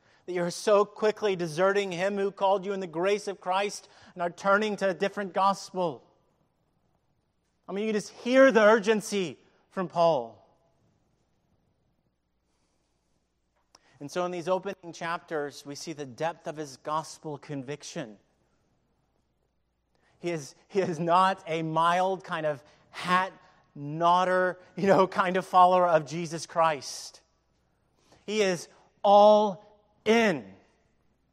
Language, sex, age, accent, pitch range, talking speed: English, male, 30-49, American, 160-215 Hz, 125 wpm